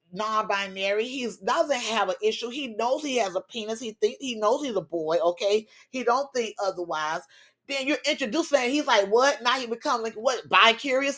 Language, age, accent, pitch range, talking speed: English, 30-49, American, 190-255 Hz, 195 wpm